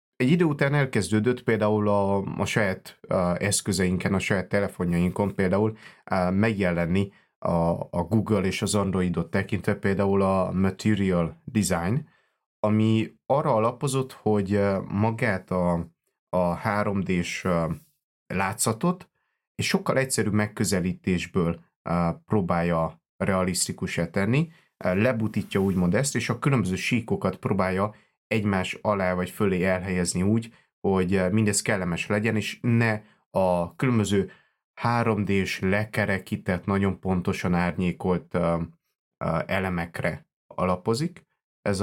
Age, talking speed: 30-49, 105 wpm